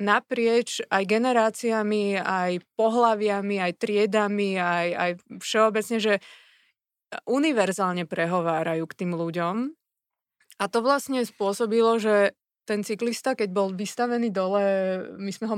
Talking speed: 115 wpm